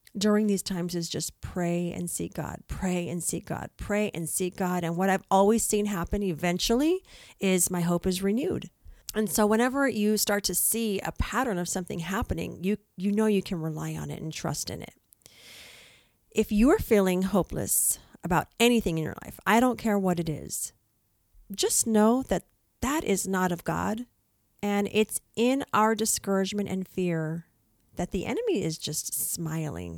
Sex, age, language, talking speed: female, 40-59, English, 180 wpm